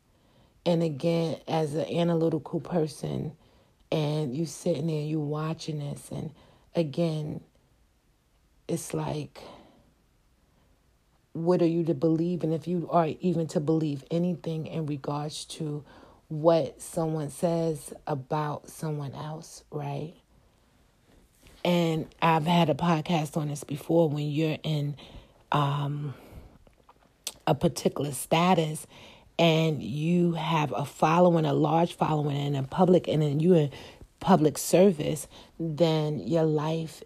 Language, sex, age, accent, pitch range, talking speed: English, female, 40-59, American, 145-165 Hz, 120 wpm